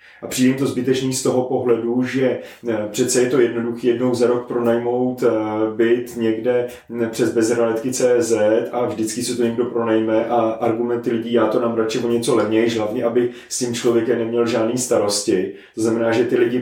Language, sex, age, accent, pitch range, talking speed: Czech, male, 30-49, native, 115-130 Hz, 175 wpm